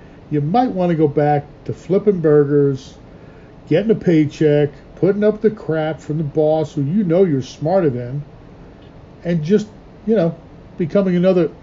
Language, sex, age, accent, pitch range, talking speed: English, male, 50-69, American, 145-180 Hz, 160 wpm